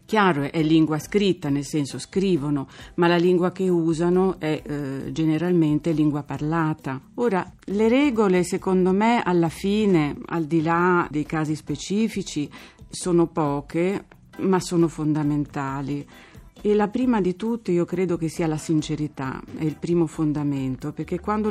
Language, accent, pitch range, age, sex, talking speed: Italian, native, 155-190 Hz, 40-59, female, 145 wpm